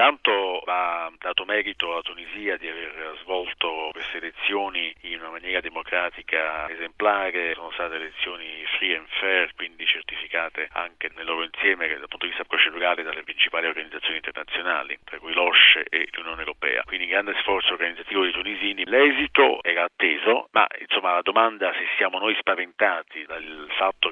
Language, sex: Italian, male